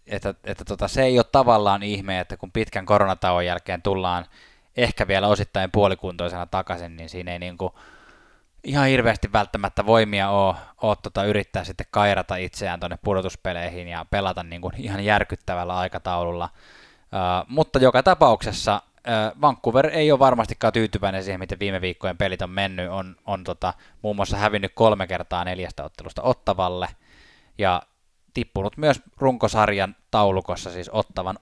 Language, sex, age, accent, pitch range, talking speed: Finnish, male, 20-39, native, 95-110 Hz, 150 wpm